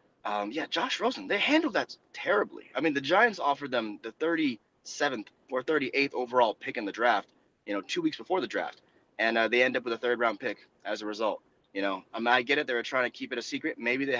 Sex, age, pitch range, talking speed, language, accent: male, 20-39, 125-185 Hz, 250 wpm, English, American